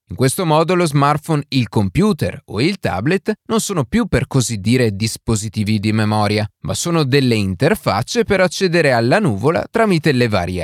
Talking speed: 170 wpm